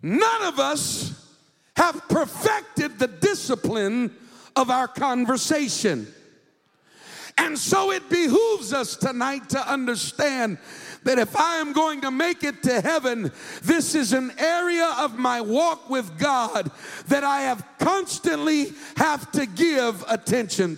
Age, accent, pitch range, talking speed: 50-69, American, 225-310 Hz, 130 wpm